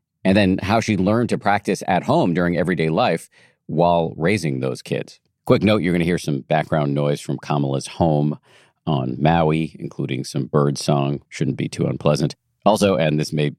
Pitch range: 75-100 Hz